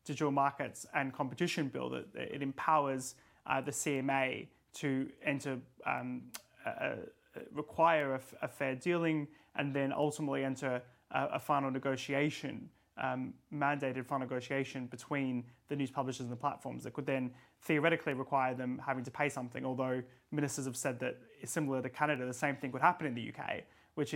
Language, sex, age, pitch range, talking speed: English, male, 20-39, 130-155 Hz, 170 wpm